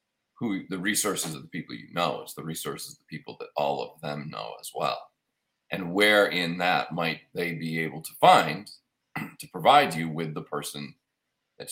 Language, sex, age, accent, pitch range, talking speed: English, male, 40-59, American, 80-100 Hz, 190 wpm